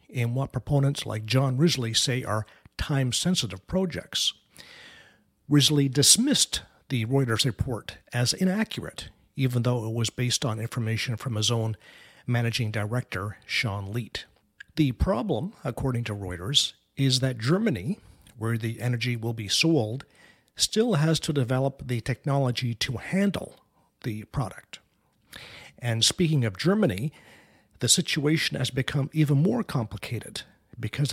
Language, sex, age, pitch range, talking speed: English, male, 50-69, 115-150 Hz, 130 wpm